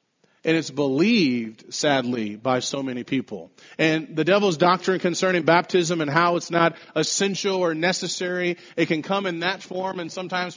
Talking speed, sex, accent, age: 165 wpm, male, American, 40-59